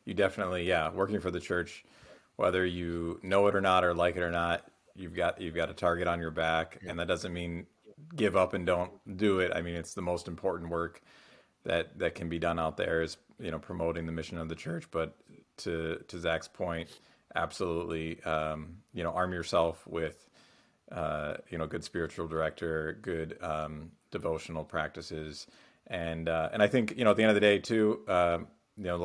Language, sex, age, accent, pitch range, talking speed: English, male, 40-59, American, 80-90 Hz, 205 wpm